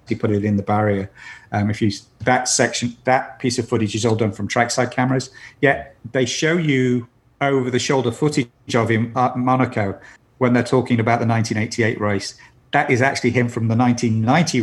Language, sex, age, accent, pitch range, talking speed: English, male, 40-59, British, 110-130 Hz, 190 wpm